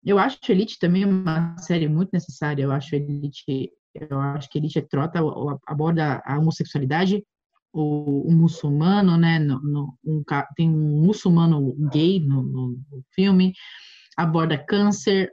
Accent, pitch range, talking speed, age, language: Brazilian, 155-195 Hz, 115 wpm, 20-39, Portuguese